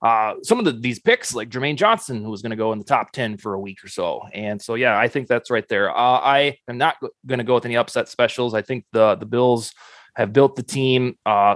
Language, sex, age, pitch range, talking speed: English, male, 20-39, 115-145 Hz, 270 wpm